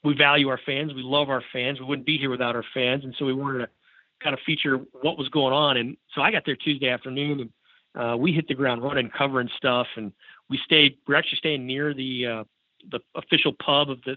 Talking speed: 240 wpm